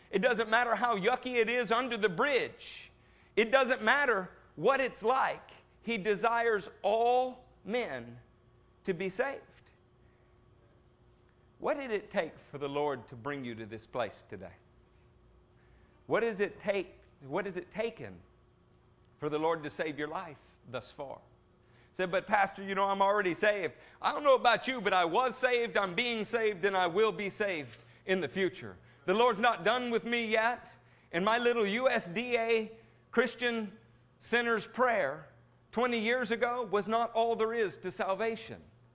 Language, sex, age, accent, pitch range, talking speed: English, male, 50-69, American, 160-245 Hz, 160 wpm